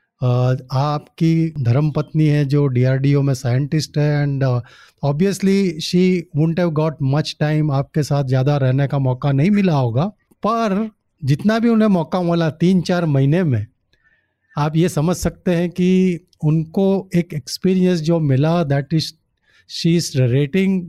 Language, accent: Hindi, native